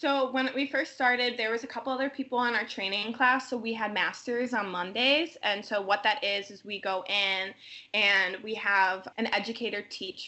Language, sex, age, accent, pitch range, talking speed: English, female, 20-39, American, 190-235 Hz, 210 wpm